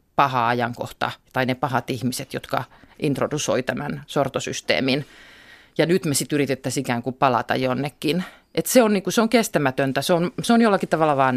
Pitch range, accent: 130-170 Hz, native